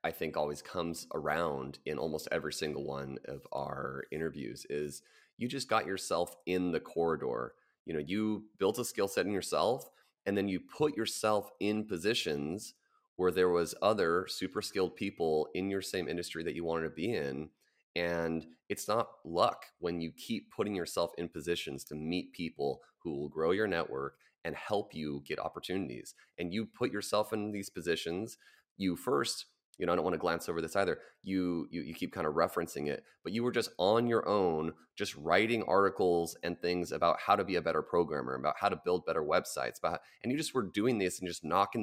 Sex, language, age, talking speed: male, English, 30-49, 200 wpm